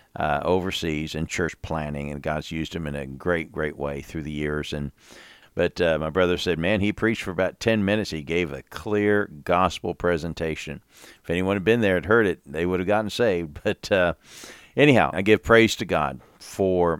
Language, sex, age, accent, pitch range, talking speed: English, male, 50-69, American, 80-95 Hz, 205 wpm